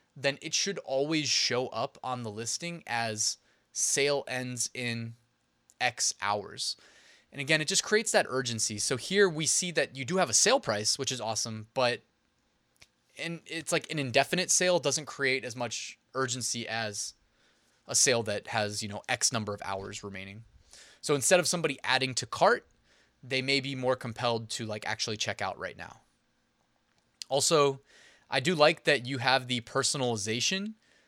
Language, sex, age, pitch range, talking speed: English, male, 20-39, 115-160 Hz, 170 wpm